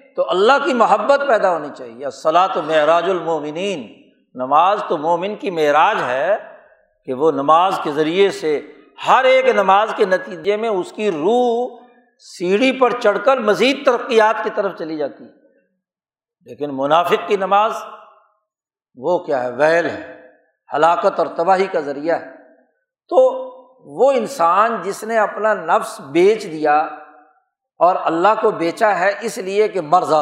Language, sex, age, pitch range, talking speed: Urdu, male, 60-79, 155-245 Hz, 150 wpm